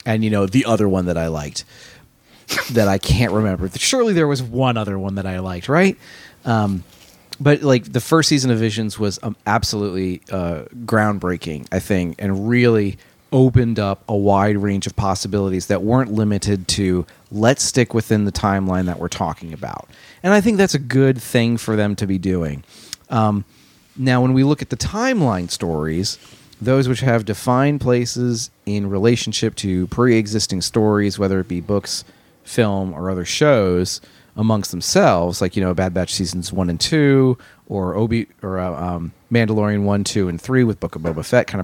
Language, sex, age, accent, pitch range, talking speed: English, male, 30-49, American, 90-120 Hz, 180 wpm